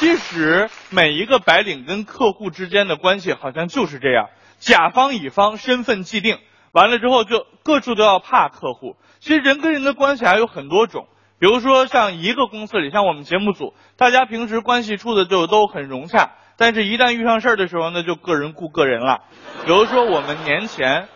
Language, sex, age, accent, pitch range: Chinese, male, 20-39, native, 160-230 Hz